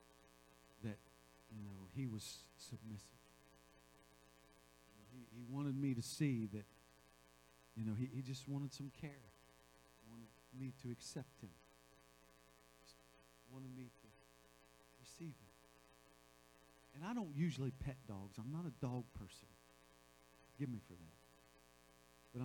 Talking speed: 130 wpm